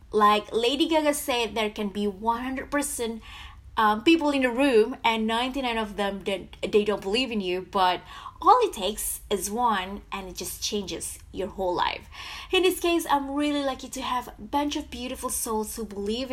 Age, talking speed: 20-39, 185 wpm